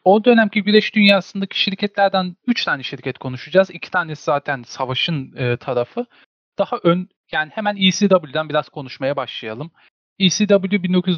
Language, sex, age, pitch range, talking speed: Turkish, male, 40-59, 130-185 Hz, 130 wpm